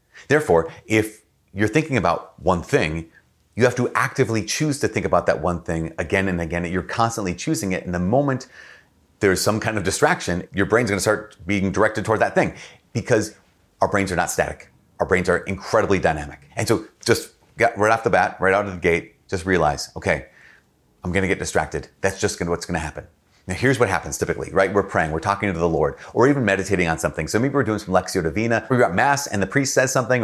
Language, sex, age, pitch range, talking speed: English, male, 30-49, 85-105 Hz, 225 wpm